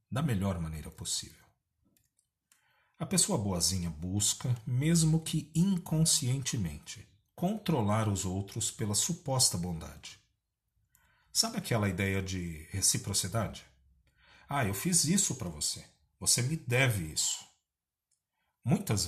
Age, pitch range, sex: 40-59, 95-140 Hz, male